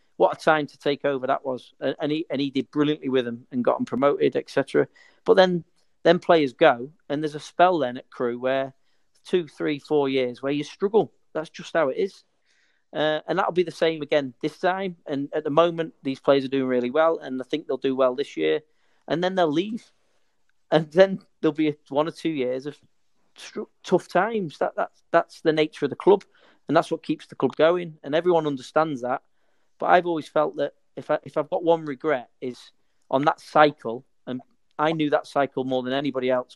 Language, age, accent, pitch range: English, 40-59, British, 130-160 Hz